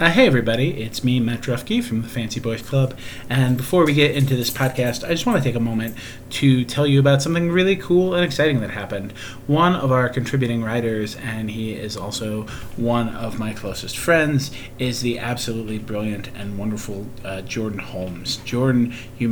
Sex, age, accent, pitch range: male, 30-49, American, 110-130 Hz